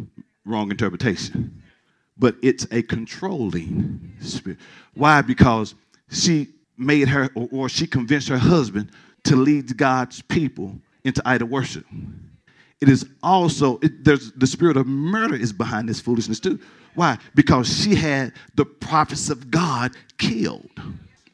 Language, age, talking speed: English, 40-59, 135 wpm